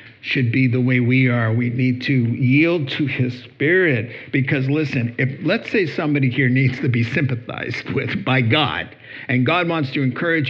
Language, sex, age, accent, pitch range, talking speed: English, male, 50-69, American, 125-175 Hz, 185 wpm